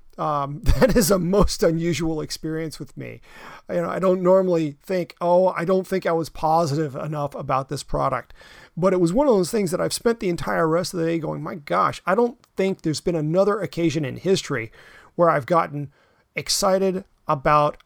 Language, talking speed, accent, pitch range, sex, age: English, 200 wpm, American, 145-185 Hz, male, 40-59